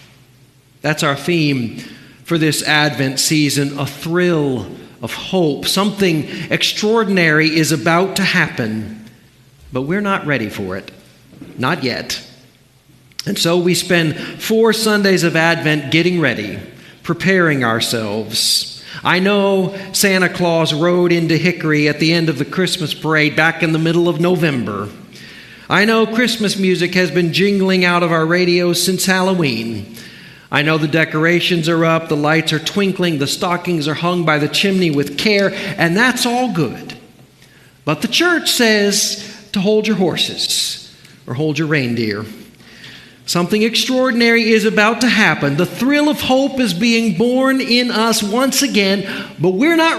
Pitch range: 145-195 Hz